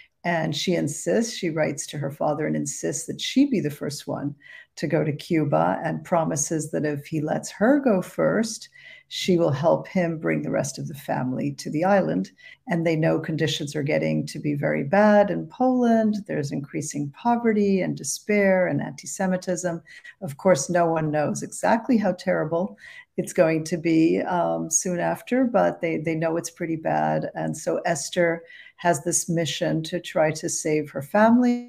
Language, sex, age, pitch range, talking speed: English, female, 50-69, 155-210 Hz, 180 wpm